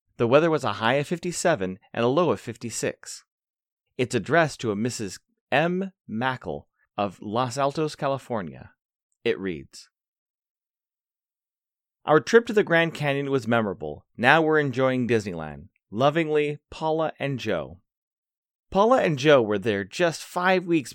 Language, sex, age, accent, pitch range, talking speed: English, male, 30-49, American, 115-155 Hz, 140 wpm